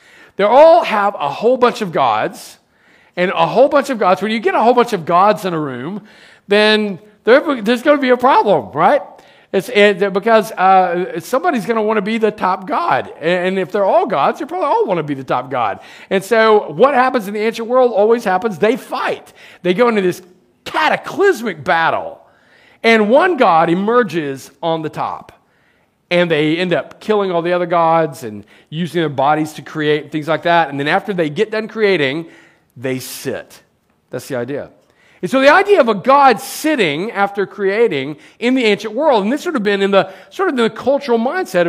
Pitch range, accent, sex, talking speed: 160-230 Hz, American, male, 200 wpm